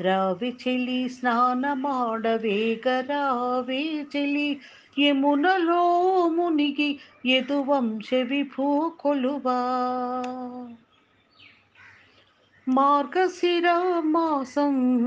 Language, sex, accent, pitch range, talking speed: Telugu, female, native, 255-295 Hz, 50 wpm